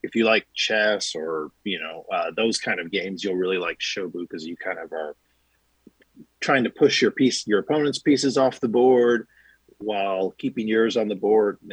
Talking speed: 200 wpm